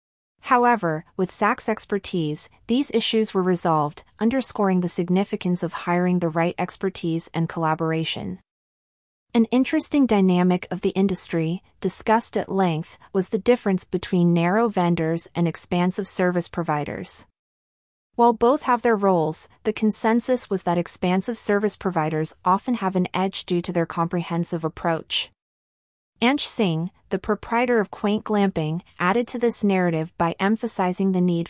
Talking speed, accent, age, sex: 140 wpm, American, 30-49, female